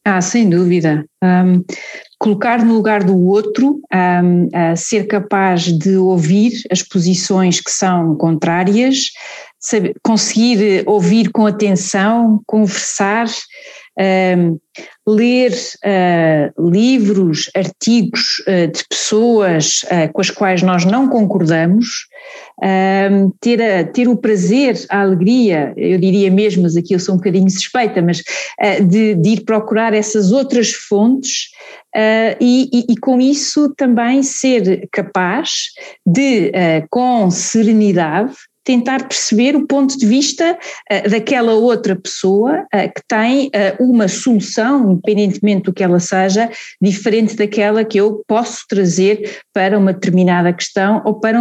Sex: female